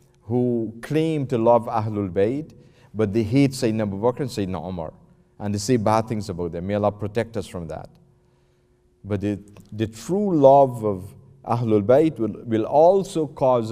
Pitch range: 95-130 Hz